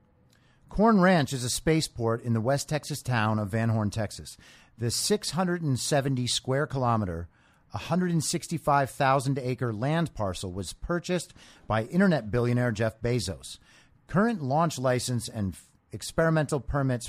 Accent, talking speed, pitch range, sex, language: American, 125 wpm, 115-155 Hz, male, English